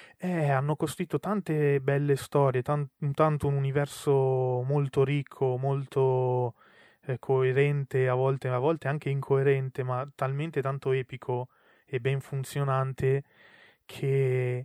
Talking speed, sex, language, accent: 110 wpm, male, Italian, native